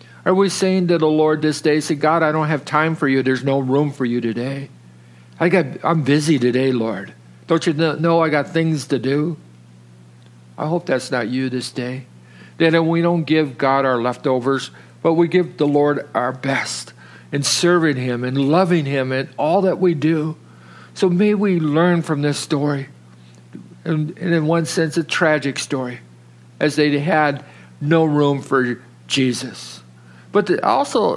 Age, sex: 60-79, male